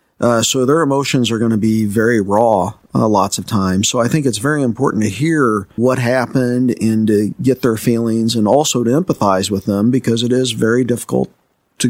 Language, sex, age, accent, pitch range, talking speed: English, male, 50-69, American, 105-130 Hz, 205 wpm